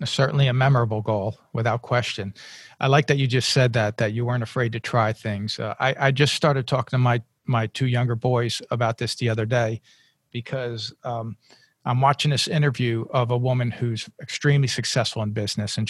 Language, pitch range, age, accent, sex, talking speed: English, 115-140 Hz, 50-69, American, male, 195 wpm